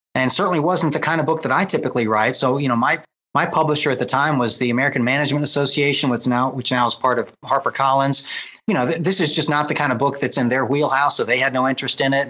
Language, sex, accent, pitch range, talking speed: English, male, American, 130-160 Hz, 270 wpm